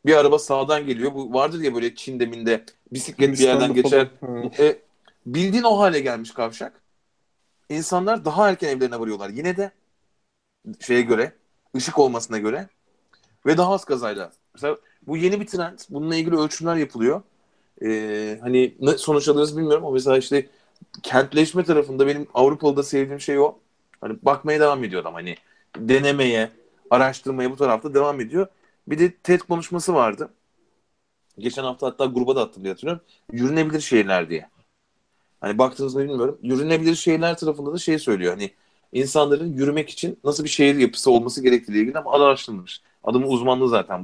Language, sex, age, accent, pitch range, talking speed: Turkish, male, 30-49, native, 125-155 Hz, 155 wpm